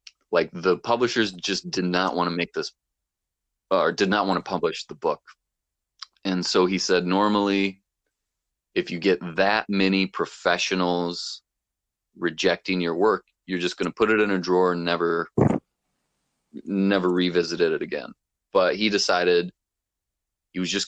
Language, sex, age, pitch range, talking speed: English, male, 30-49, 85-95 Hz, 150 wpm